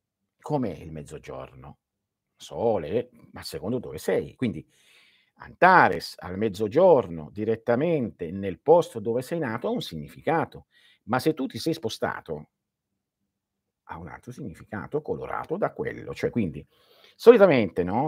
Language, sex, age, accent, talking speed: Italian, male, 50-69, native, 125 wpm